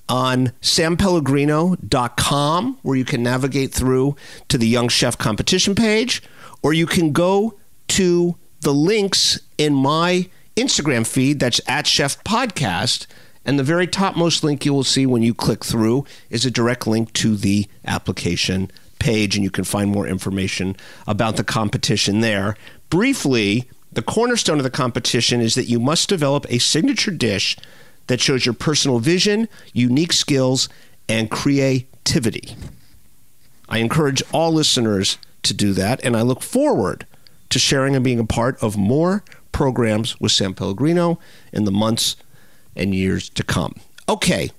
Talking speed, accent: 150 wpm, American